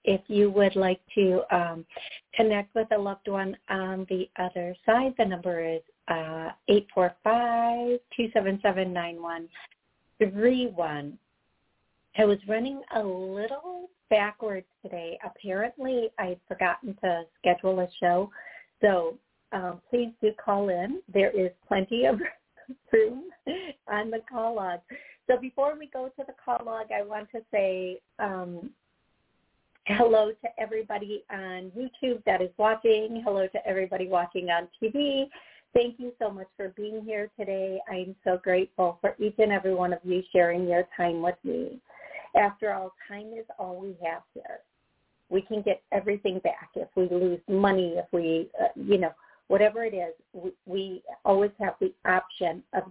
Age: 50-69